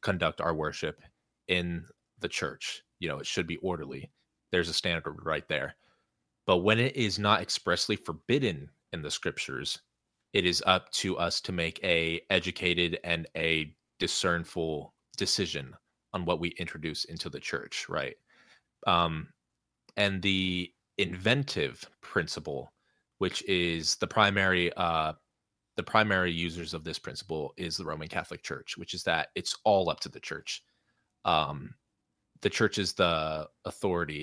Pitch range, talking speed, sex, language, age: 80-100 Hz, 145 wpm, male, English, 20-39